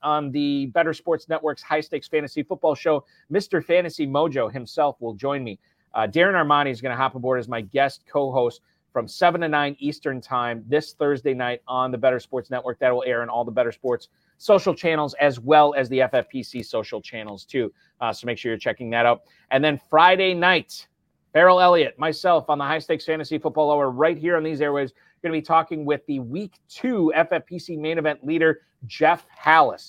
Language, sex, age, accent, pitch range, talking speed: English, male, 30-49, American, 125-155 Hz, 200 wpm